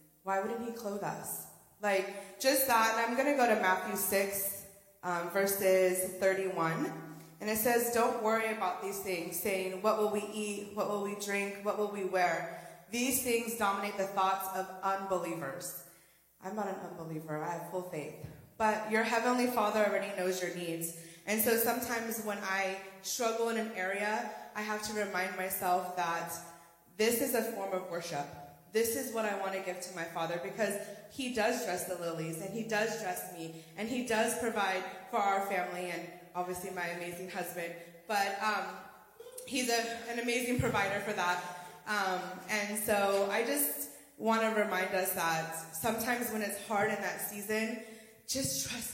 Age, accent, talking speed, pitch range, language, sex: 20-39, American, 175 wpm, 180-225 Hz, English, female